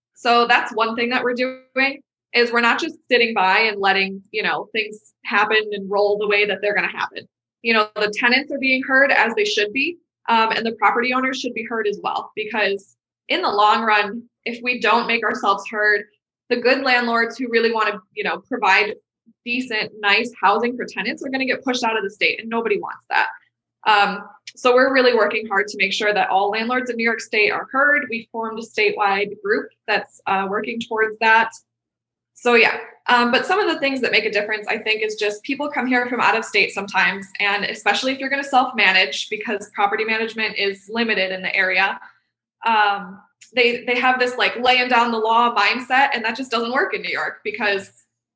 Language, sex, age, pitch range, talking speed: English, female, 20-39, 205-250 Hz, 215 wpm